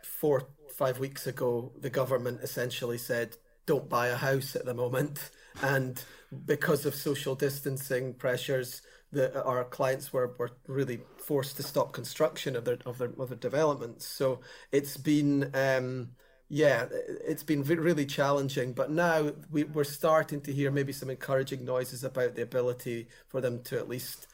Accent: British